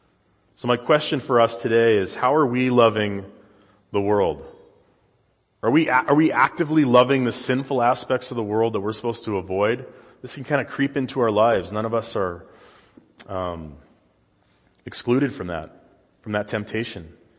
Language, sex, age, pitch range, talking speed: English, male, 30-49, 110-140 Hz, 170 wpm